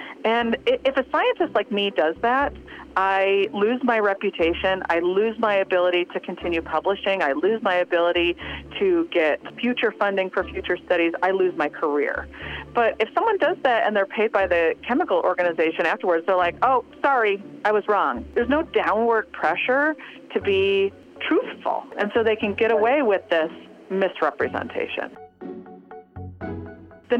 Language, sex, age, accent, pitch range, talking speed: English, female, 40-59, American, 180-270 Hz, 155 wpm